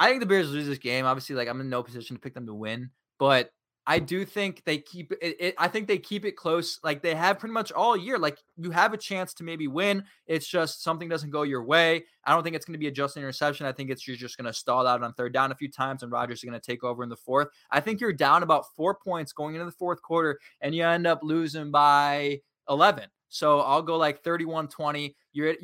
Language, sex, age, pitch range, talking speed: English, male, 20-39, 135-190 Hz, 270 wpm